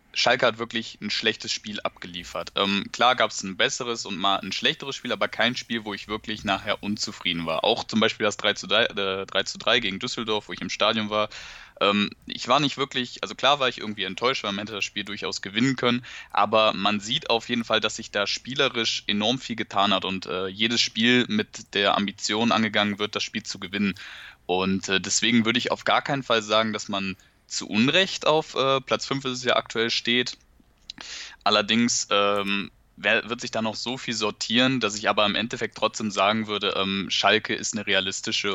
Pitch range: 95-115 Hz